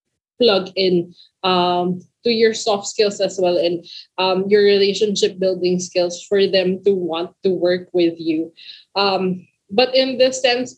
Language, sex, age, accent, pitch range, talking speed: English, female, 20-39, Filipino, 180-205 Hz, 155 wpm